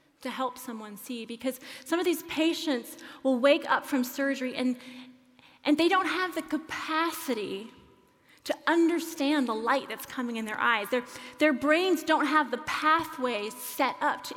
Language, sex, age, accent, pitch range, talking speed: English, female, 30-49, American, 250-310 Hz, 165 wpm